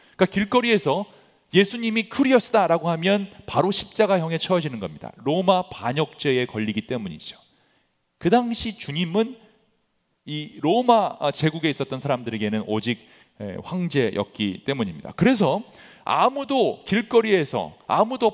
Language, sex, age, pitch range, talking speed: English, male, 40-59, 130-205 Hz, 90 wpm